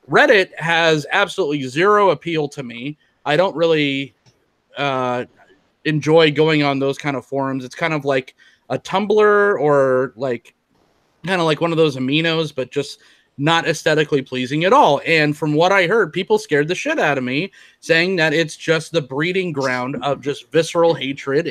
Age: 30-49